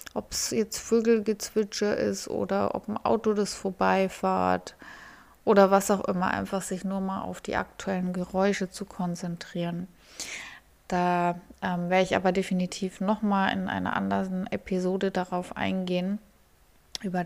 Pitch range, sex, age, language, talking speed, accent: 180-210 Hz, female, 20-39, German, 140 wpm, German